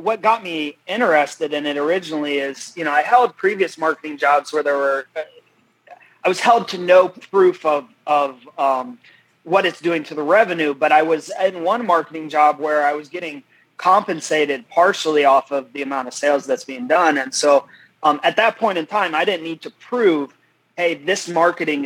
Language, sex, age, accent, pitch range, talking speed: English, male, 30-49, American, 150-185 Hz, 195 wpm